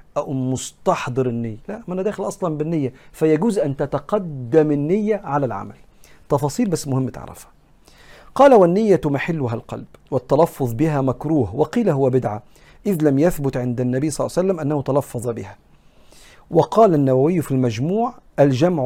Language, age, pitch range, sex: Arabic, 50-69, 125-165 Hz, male